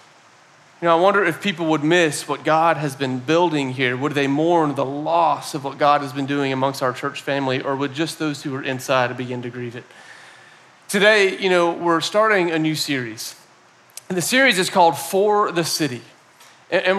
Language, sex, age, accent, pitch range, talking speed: English, male, 40-59, American, 150-195 Hz, 200 wpm